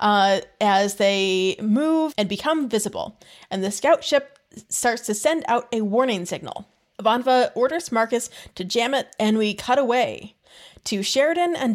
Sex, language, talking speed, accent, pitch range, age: female, English, 160 wpm, American, 205-270 Hz, 30-49